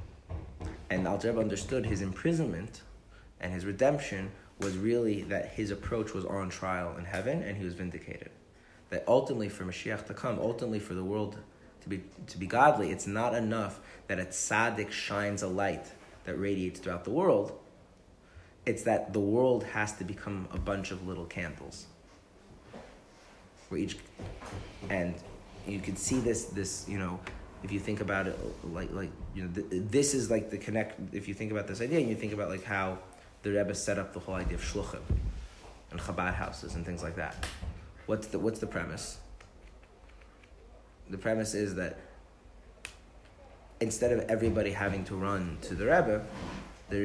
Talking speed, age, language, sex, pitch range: 170 wpm, 30-49, English, male, 90-105 Hz